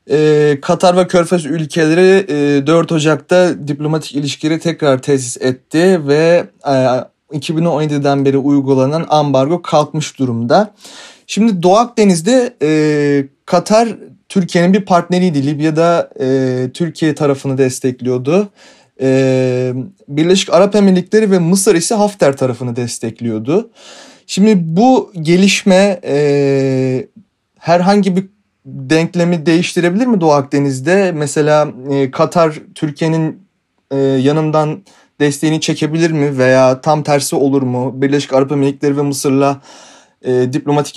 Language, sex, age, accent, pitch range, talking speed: Turkish, male, 30-49, native, 140-180 Hz, 105 wpm